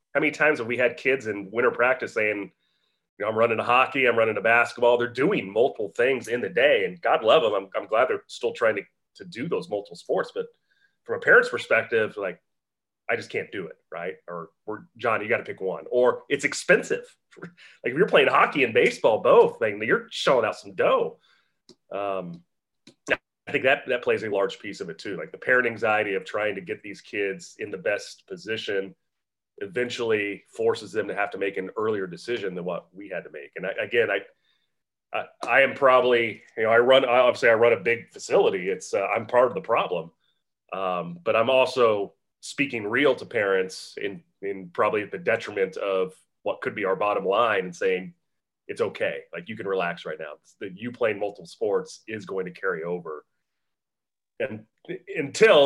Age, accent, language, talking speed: 30-49, American, English, 210 wpm